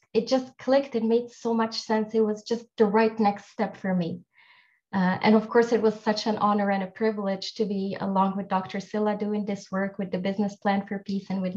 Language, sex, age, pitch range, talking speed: English, female, 20-39, 200-245 Hz, 240 wpm